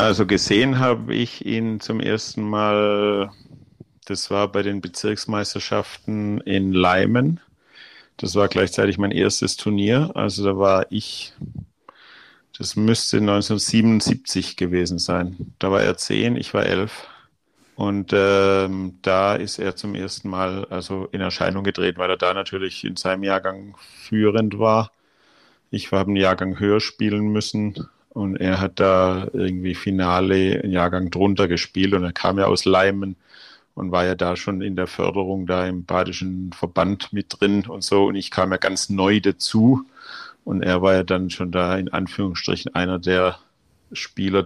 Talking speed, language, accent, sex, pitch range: 155 wpm, German, German, male, 90-100 Hz